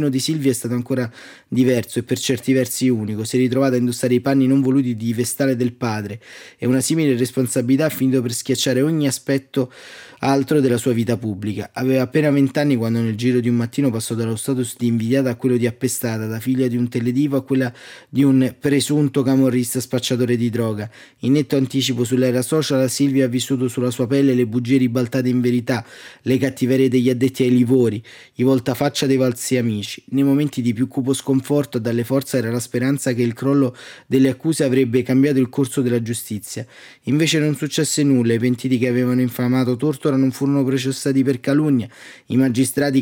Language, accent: Italian, native